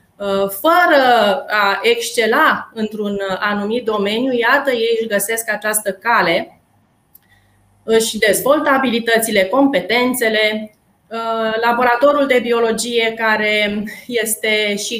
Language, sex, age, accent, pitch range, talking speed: Romanian, female, 20-39, native, 205-240 Hz, 90 wpm